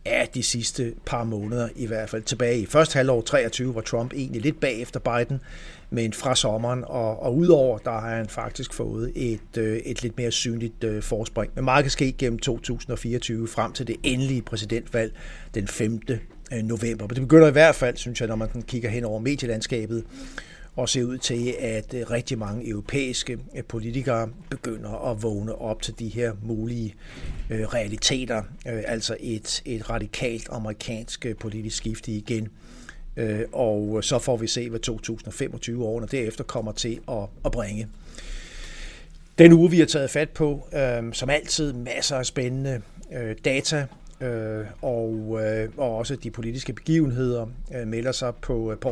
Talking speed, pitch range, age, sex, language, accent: 155 wpm, 110-130 Hz, 60-79, male, Danish, native